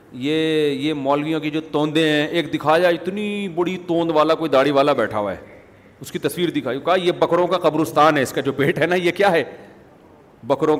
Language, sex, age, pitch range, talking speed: Urdu, male, 40-59, 150-185 Hz, 220 wpm